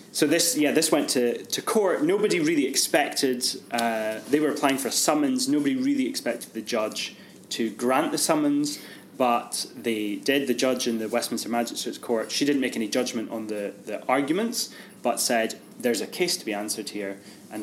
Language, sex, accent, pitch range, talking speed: English, male, British, 105-130 Hz, 190 wpm